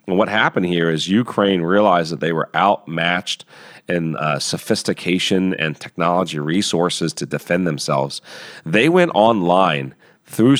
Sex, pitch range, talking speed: male, 80-100 Hz, 135 wpm